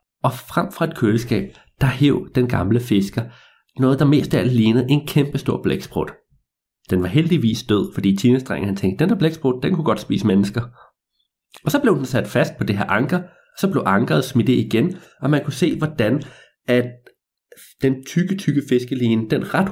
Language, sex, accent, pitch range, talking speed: Danish, male, native, 120-165 Hz, 200 wpm